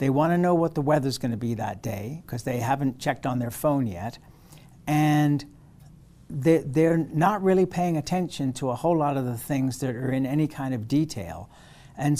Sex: male